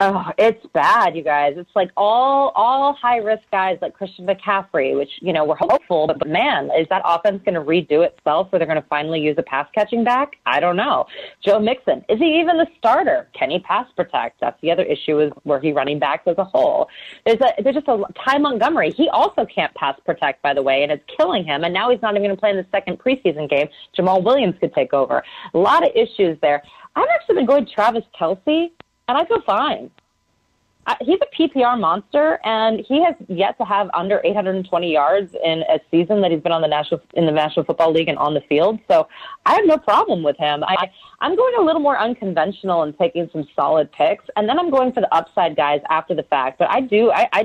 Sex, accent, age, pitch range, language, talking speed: female, American, 30-49, 165-255 Hz, English, 235 wpm